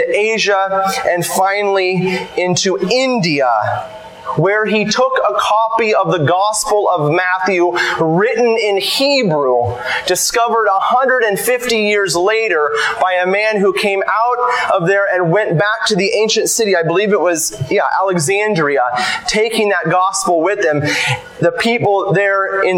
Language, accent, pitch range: English, American, 165-215 Hz